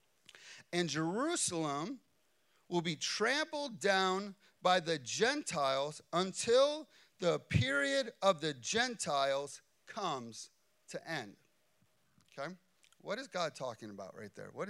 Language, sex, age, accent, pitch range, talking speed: English, male, 30-49, American, 145-200 Hz, 110 wpm